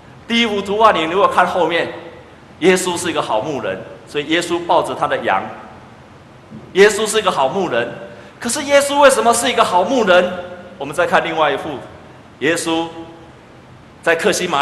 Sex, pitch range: male, 140-195 Hz